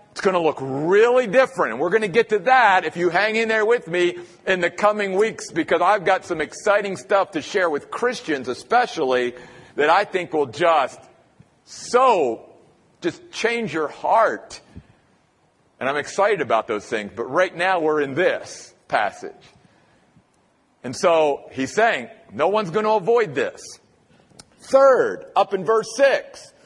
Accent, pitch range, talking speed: American, 180-245 Hz, 165 wpm